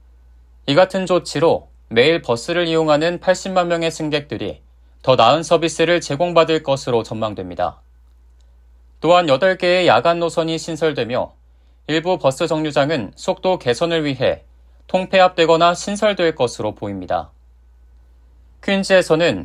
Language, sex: Korean, male